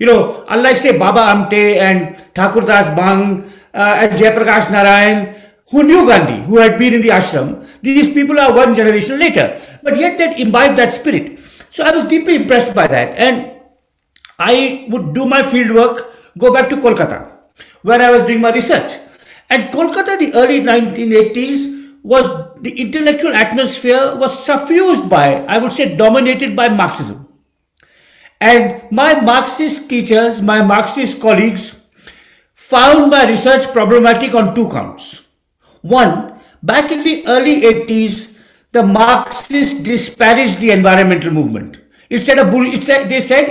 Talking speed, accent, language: 150 wpm, native, Hindi